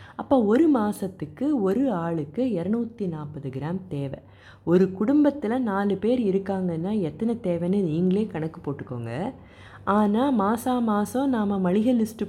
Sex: female